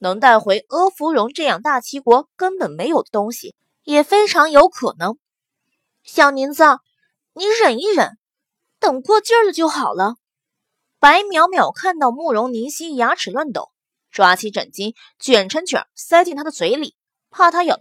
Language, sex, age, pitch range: Chinese, female, 20-39, 250-345 Hz